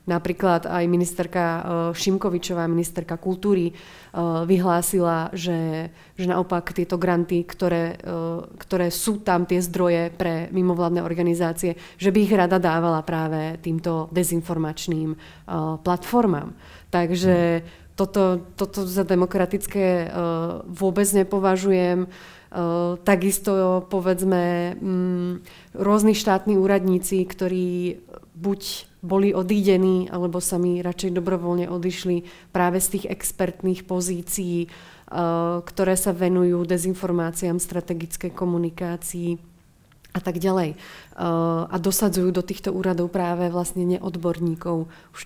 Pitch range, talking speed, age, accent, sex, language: 175-190 Hz, 100 wpm, 30-49, native, female, Czech